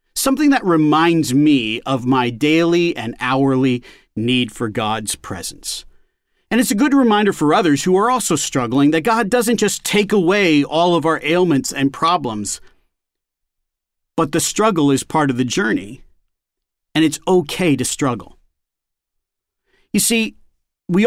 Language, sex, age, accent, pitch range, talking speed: English, male, 40-59, American, 130-190 Hz, 150 wpm